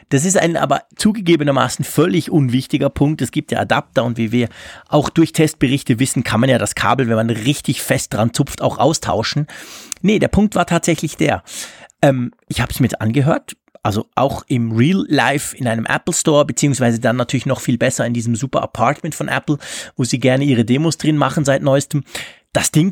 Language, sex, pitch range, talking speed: German, male, 130-170 Hz, 200 wpm